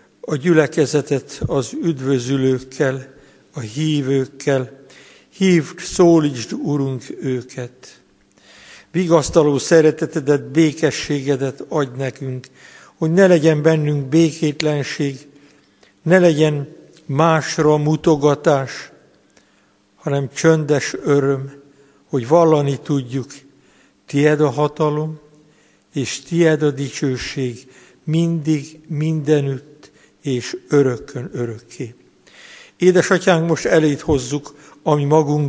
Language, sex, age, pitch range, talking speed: Hungarian, male, 60-79, 135-155 Hz, 80 wpm